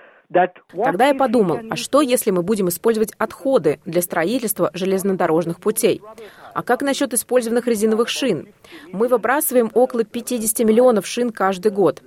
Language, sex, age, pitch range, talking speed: Russian, female, 20-39, 175-235 Hz, 140 wpm